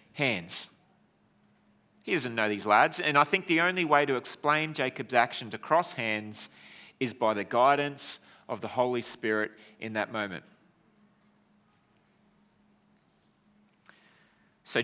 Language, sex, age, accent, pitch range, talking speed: English, male, 30-49, Australian, 110-150 Hz, 125 wpm